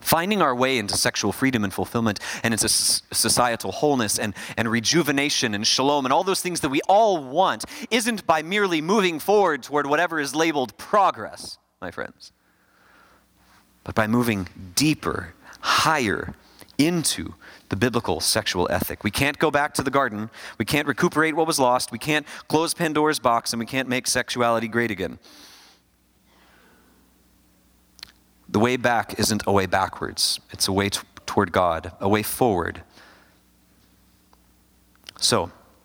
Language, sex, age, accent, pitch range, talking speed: English, male, 30-49, American, 100-150 Hz, 145 wpm